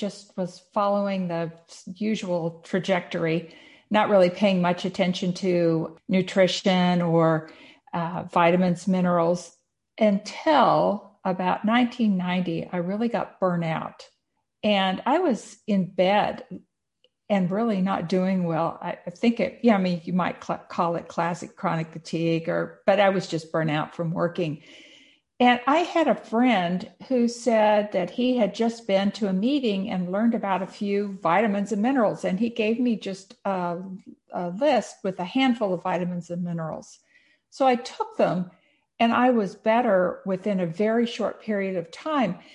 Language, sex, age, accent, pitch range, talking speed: English, female, 50-69, American, 175-225 Hz, 155 wpm